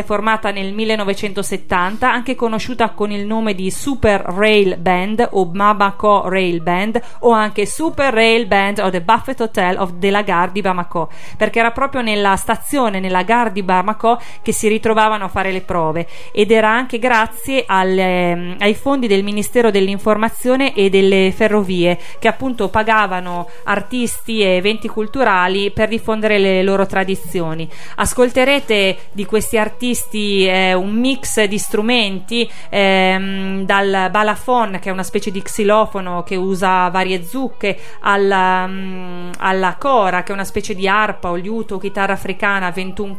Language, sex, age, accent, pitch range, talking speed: Italian, female, 30-49, native, 190-225 Hz, 150 wpm